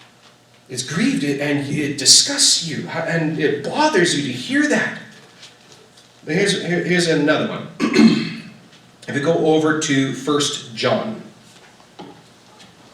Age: 30-49